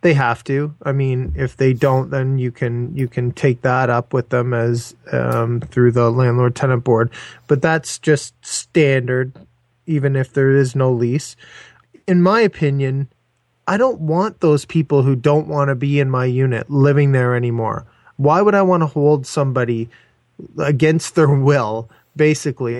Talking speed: 170 wpm